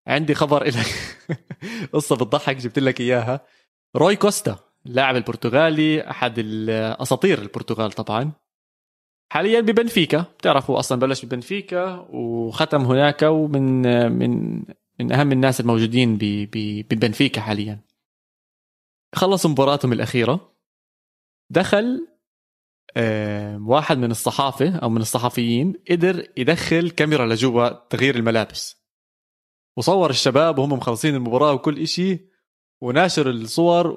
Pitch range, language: 120-170 Hz, Arabic